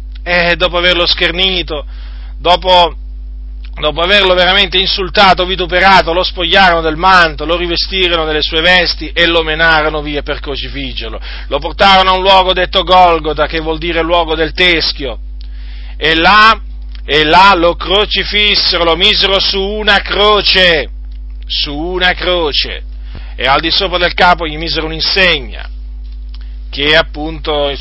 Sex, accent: male, native